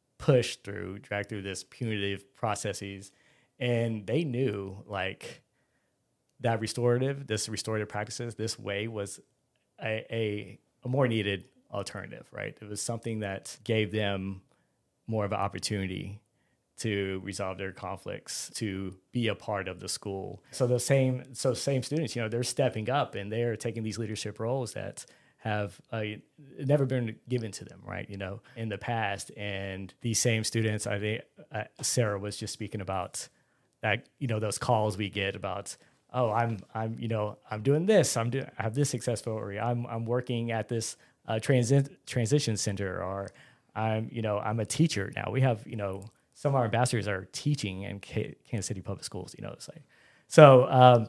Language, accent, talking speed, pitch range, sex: English, American, 180 wpm, 100-125 Hz, male